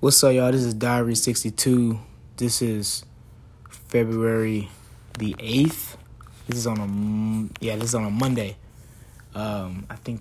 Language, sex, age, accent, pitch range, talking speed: English, male, 20-39, American, 115-130 Hz, 155 wpm